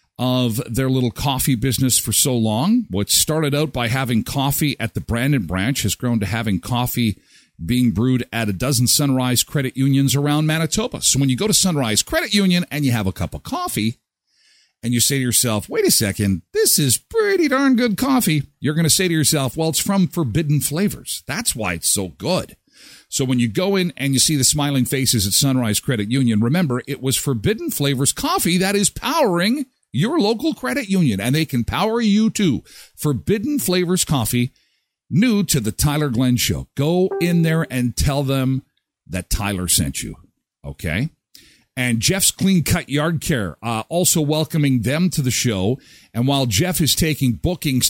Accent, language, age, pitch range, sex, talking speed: American, English, 50-69, 120-170 Hz, male, 190 wpm